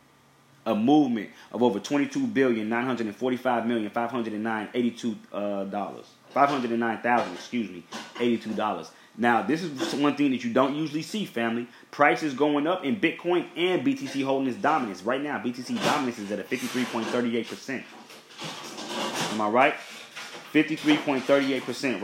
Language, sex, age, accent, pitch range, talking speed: English, male, 30-49, American, 115-145 Hz, 120 wpm